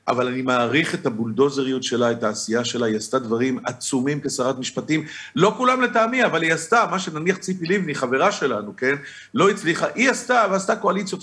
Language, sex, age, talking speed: Hebrew, male, 50-69, 180 wpm